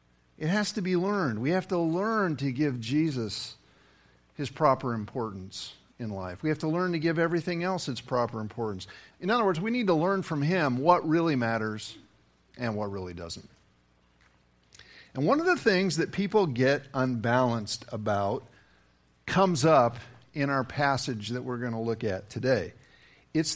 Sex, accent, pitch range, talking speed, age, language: male, American, 110-170 Hz, 170 wpm, 50-69, English